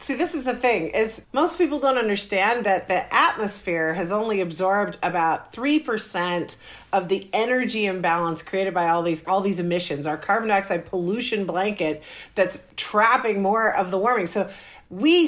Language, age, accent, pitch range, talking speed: English, 40-59, American, 175-240 Hz, 165 wpm